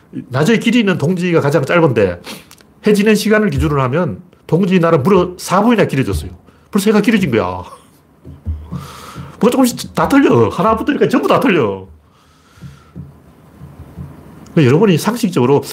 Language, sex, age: Korean, male, 40-59